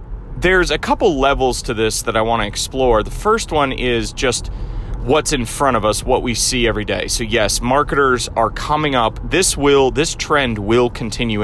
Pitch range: 110-130 Hz